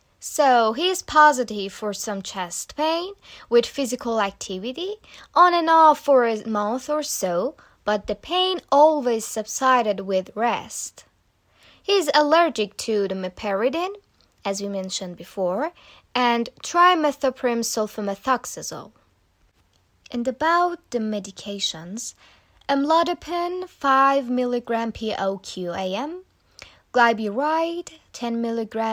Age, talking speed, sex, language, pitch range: 20-39, 100 wpm, female, Persian, 200-285 Hz